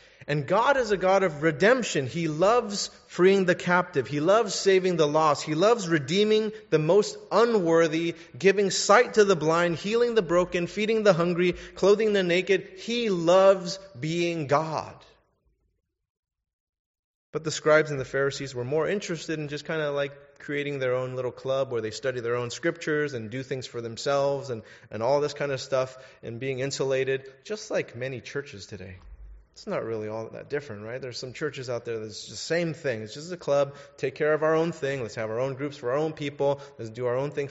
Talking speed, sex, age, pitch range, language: 205 wpm, male, 30-49, 120-165 Hz, English